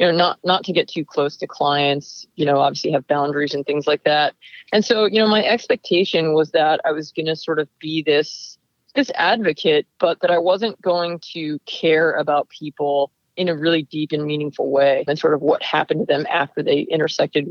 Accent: American